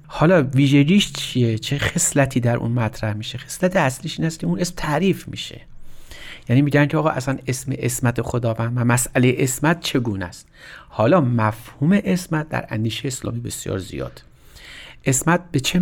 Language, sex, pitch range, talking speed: Persian, male, 115-155 Hz, 155 wpm